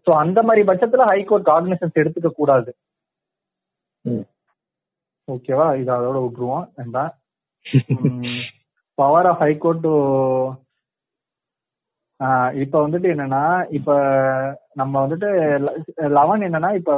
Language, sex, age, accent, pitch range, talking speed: Tamil, male, 30-49, native, 140-175 Hz, 90 wpm